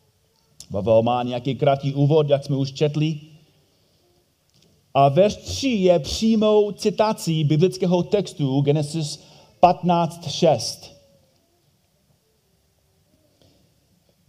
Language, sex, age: Czech, male, 30-49